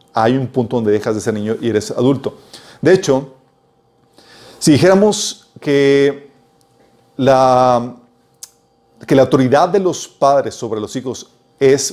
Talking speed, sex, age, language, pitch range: 135 wpm, male, 40-59, Spanish, 115-145 Hz